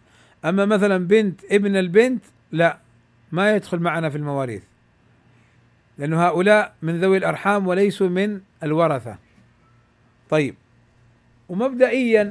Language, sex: Arabic, male